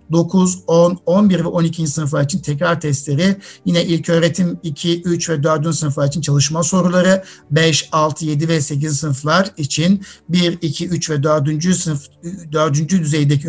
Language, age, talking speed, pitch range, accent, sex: Turkish, 60-79, 155 wpm, 150-170 Hz, native, male